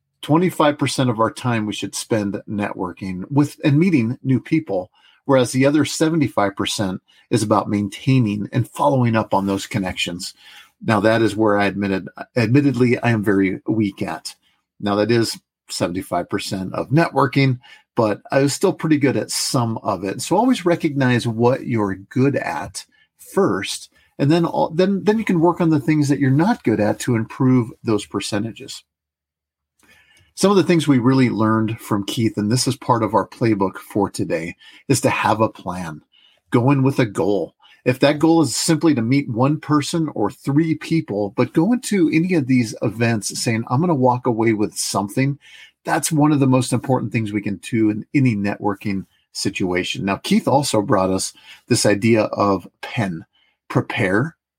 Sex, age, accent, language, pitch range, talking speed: male, 50-69, American, English, 105-145 Hz, 175 wpm